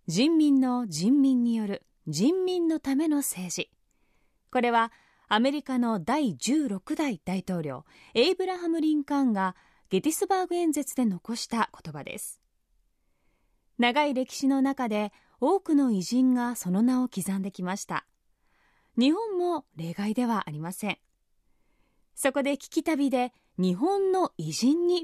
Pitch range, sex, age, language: 225-305 Hz, female, 20-39, Japanese